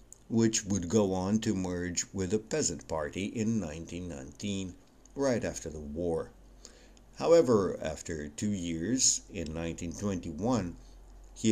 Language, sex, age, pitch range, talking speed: English, male, 60-79, 80-105 Hz, 120 wpm